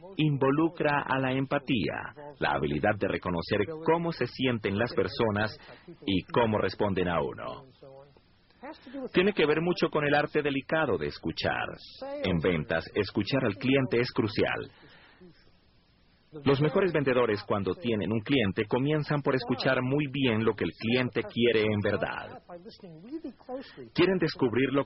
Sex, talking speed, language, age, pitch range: male, 140 wpm, Spanish, 40-59, 110-150 Hz